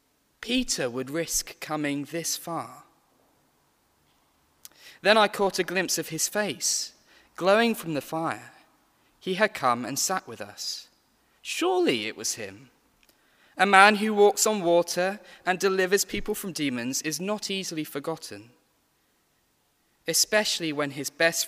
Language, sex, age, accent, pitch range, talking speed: English, male, 20-39, British, 140-215 Hz, 135 wpm